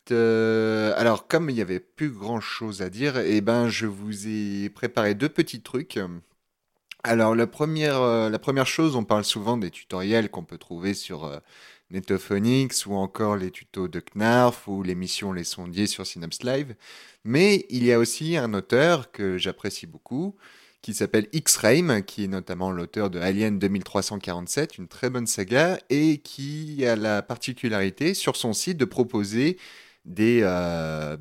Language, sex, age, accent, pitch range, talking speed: French, male, 30-49, French, 95-115 Hz, 170 wpm